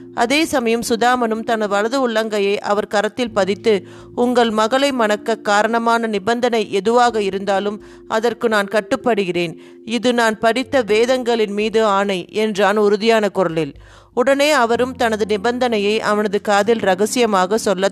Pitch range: 200-235 Hz